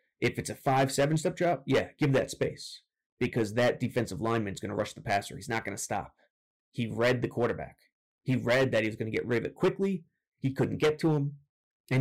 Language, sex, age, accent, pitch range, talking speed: English, male, 30-49, American, 115-145 Hz, 235 wpm